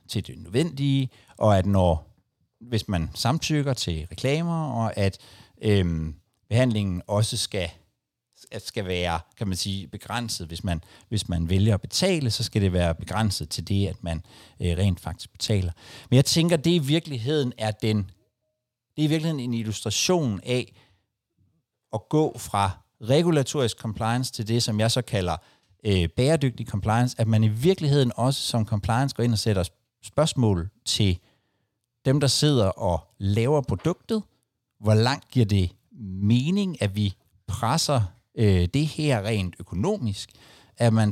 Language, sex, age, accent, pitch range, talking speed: Danish, male, 60-79, native, 100-130 Hz, 155 wpm